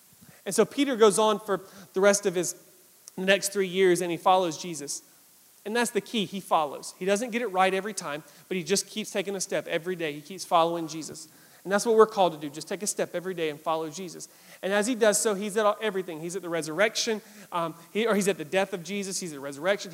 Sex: male